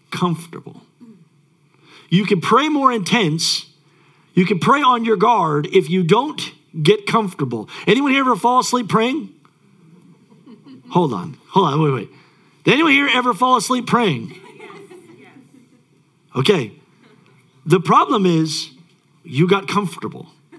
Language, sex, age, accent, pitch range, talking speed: English, male, 50-69, American, 155-230 Hz, 125 wpm